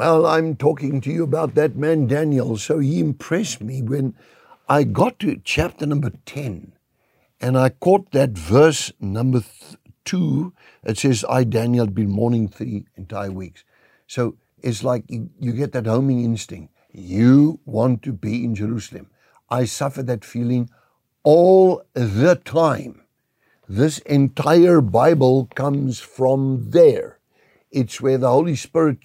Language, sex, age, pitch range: English, male, 60-79, 115-150 Hz